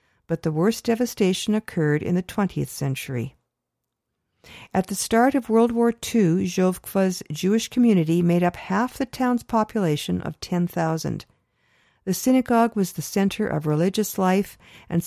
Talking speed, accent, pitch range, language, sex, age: 145 wpm, American, 165-225 Hz, English, female, 50-69